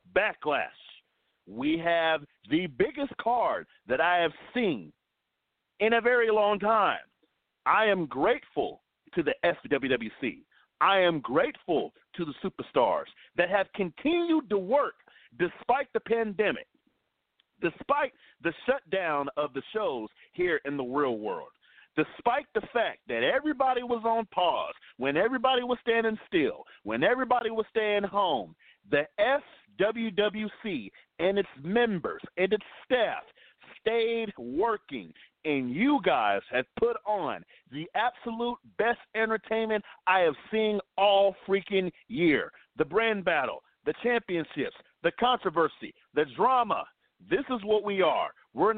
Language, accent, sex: English, American, male